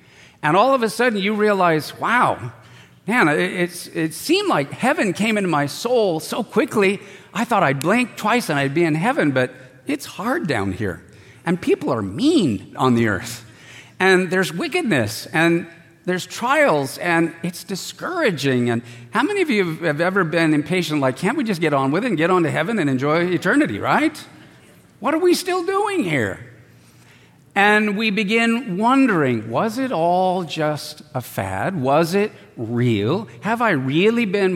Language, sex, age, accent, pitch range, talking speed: English, male, 50-69, American, 140-210 Hz, 175 wpm